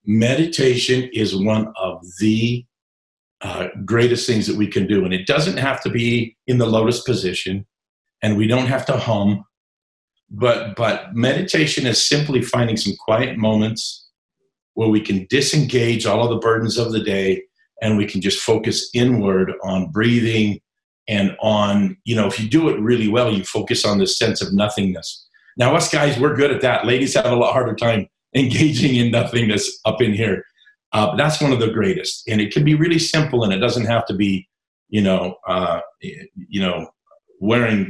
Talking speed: 185 wpm